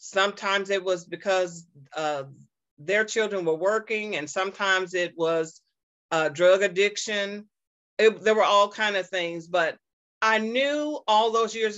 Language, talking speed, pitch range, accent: English, 145 wpm, 185-230 Hz, American